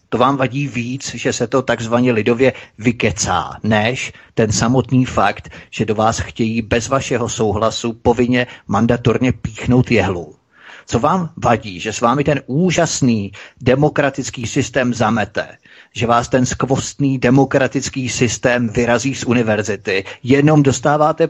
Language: Czech